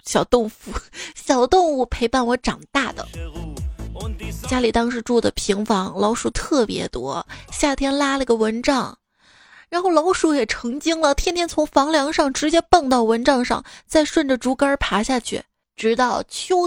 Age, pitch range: 20-39, 220-295 Hz